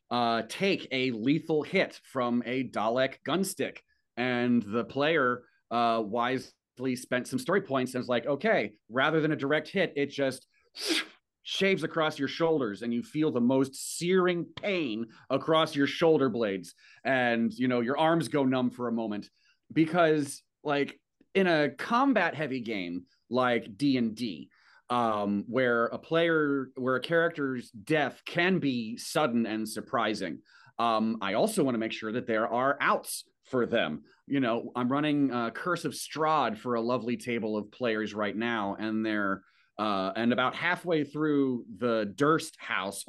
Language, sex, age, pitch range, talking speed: English, male, 30-49, 115-150 Hz, 160 wpm